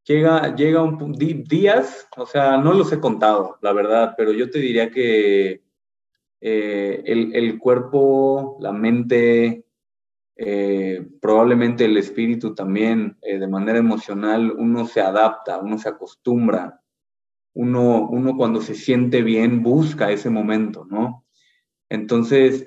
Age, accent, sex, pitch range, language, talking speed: 20-39, Mexican, male, 110-130 Hz, Spanish, 130 wpm